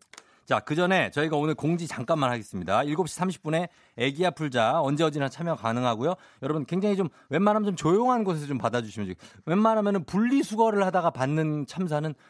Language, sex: Korean, male